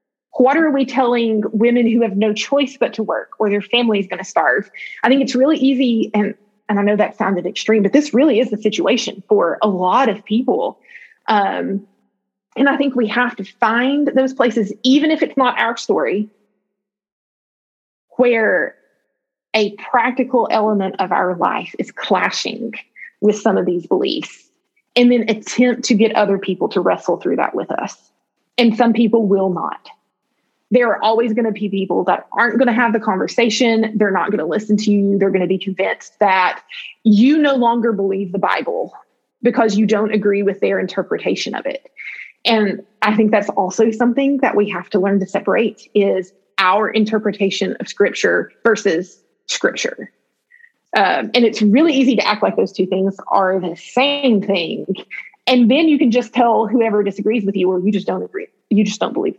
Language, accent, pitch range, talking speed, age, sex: English, American, 200-250 Hz, 190 wpm, 30-49, female